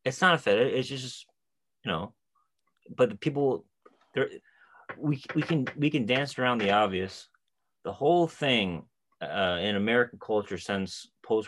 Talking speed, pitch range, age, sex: 150 wpm, 90-115 Hz, 30-49, male